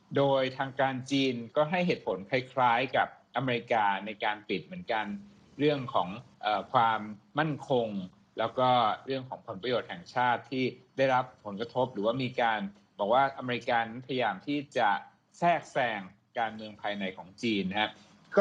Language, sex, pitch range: Thai, male, 115-150 Hz